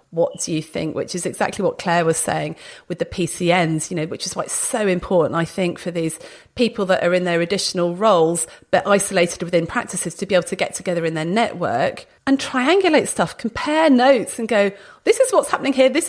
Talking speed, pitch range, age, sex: 220 wpm, 180-255 Hz, 30-49, female